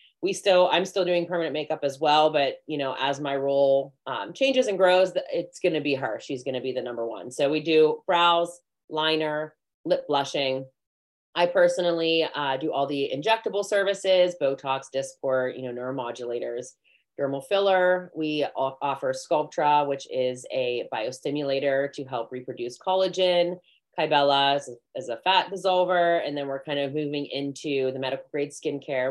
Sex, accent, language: female, American, English